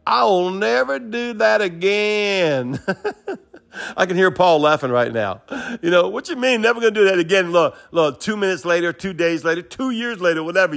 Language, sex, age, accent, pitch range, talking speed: English, male, 50-69, American, 140-200 Hz, 195 wpm